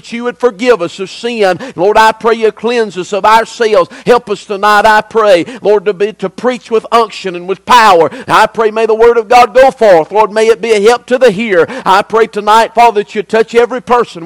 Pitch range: 205-240 Hz